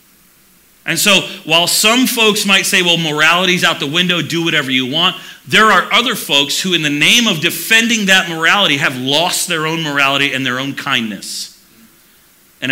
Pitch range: 140-200 Hz